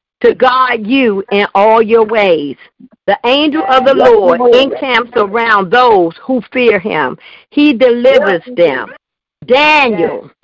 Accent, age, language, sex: American, 50-69, English, female